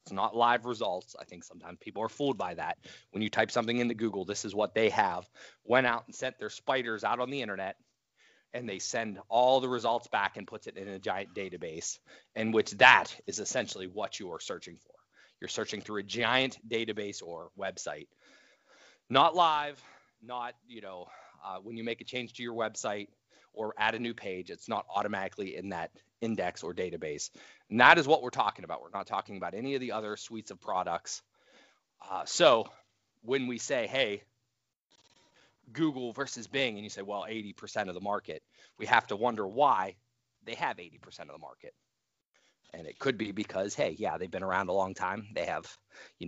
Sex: male